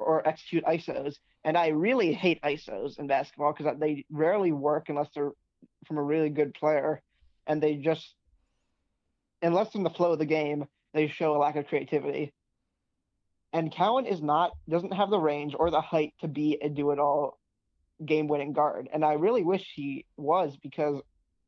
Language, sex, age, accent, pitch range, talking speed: English, male, 20-39, American, 145-160 Hz, 170 wpm